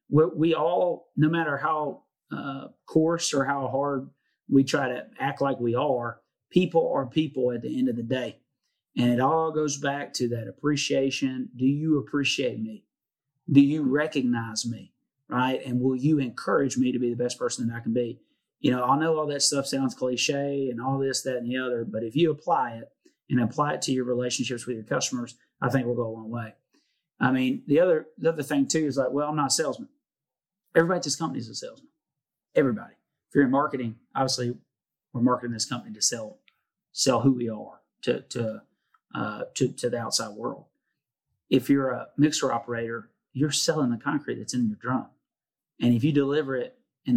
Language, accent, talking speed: English, American, 200 wpm